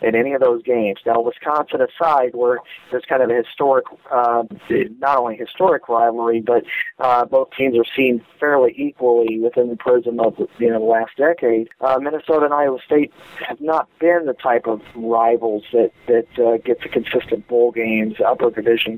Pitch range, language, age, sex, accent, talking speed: 115-145 Hz, English, 50-69, male, American, 185 wpm